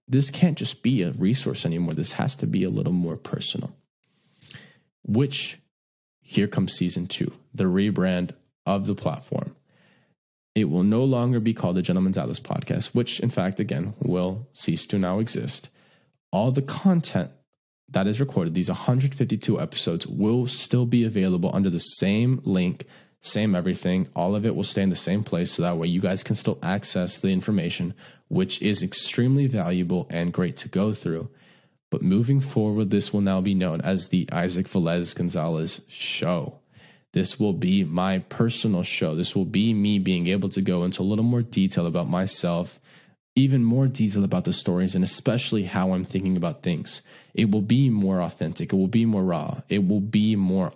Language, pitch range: English, 90-120 Hz